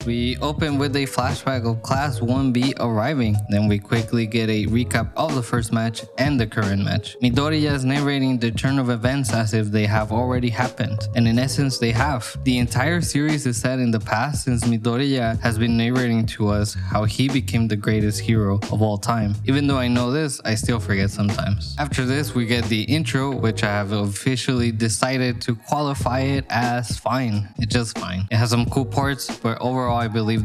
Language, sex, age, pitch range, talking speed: English, male, 20-39, 110-130 Hz, 200 wpm